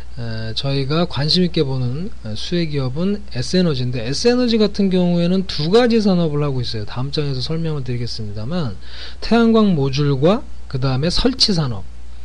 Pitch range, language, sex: 130-190 Hz, Korean, male